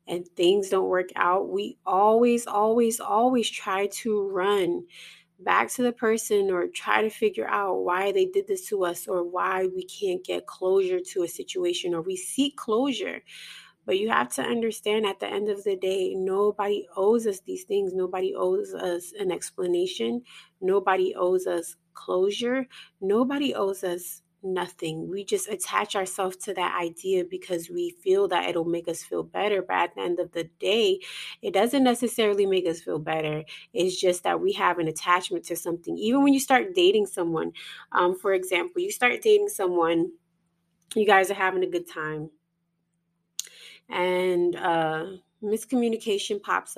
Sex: female